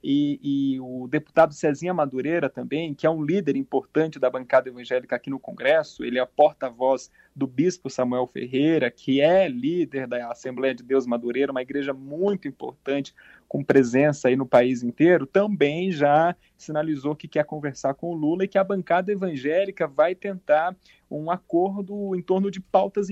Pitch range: 135-175 Hz